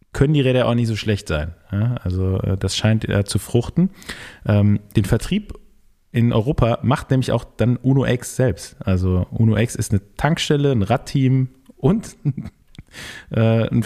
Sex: male